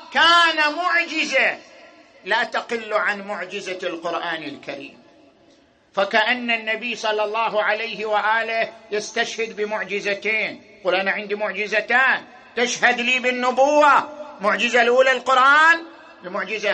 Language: Arabic